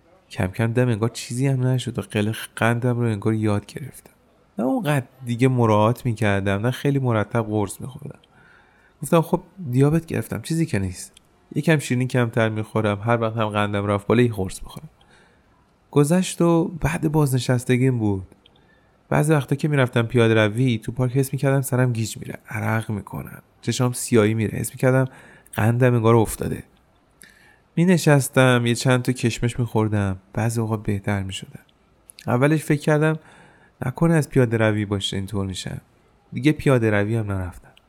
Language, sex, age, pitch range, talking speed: Persian, male, 30-49, 110-140 Hz, 155 wpm